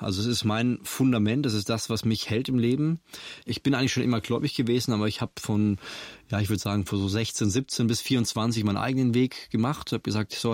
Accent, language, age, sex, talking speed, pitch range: German, German, 20-39, male, 240 wpm, 105-120 Hz